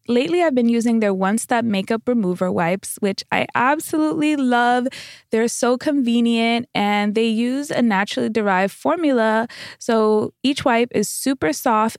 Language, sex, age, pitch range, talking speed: English, female, 20-39, 210-255 Hz, 150 wpm